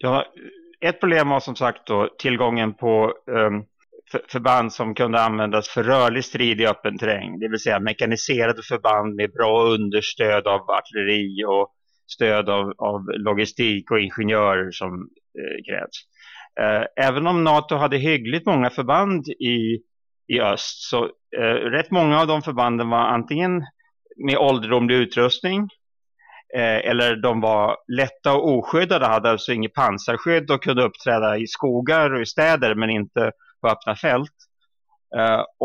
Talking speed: 140 wpm